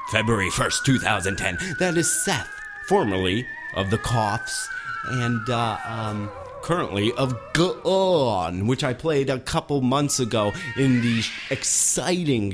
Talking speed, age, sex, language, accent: 125 wpm, 30-49, male, English, American